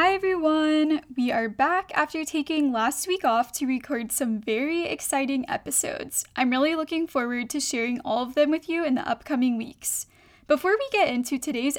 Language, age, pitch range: English, 10-29, 245-310 Hz